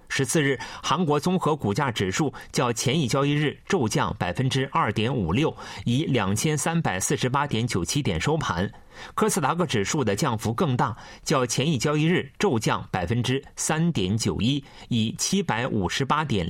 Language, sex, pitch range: Chinese, male, 110-160 Hz